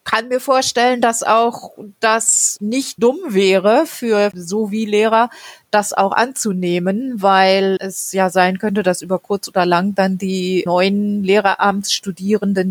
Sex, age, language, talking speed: female, 30-49, German, 140 wpm